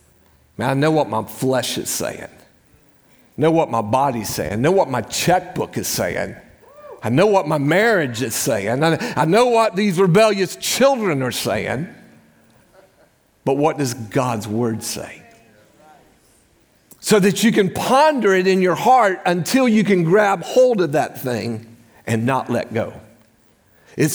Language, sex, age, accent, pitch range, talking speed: English, male, 50-69, American, 140-225 Hz, 165 wpm